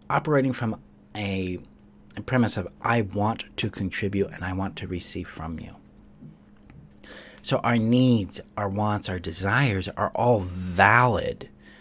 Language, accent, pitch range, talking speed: English, American, 95-115 Hz, 130 wpm